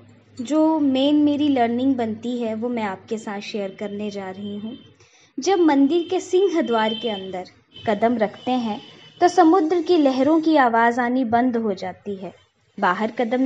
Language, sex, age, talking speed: Hindi, female, 20-39, 170 wpm